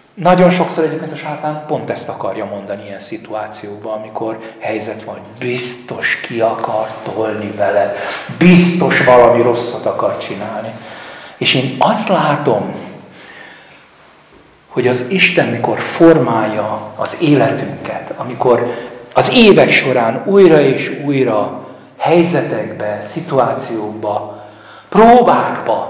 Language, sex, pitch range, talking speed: Hungarian, male, 115-150 Hz, 105 wpm